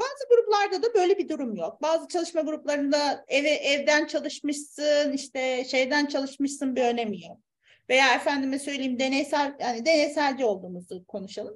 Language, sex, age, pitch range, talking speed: Turkish, female, 40-59, 275-405 Hz, 135 wpm